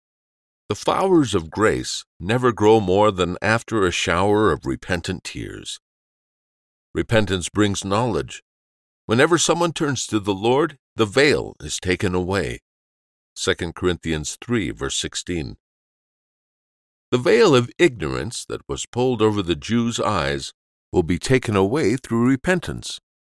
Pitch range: 75-125 Hz